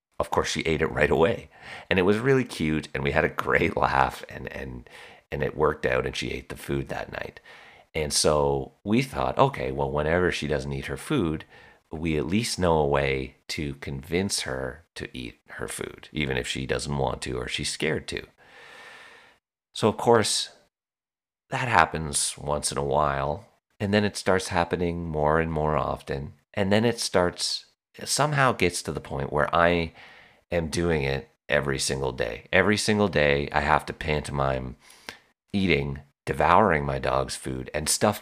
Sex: male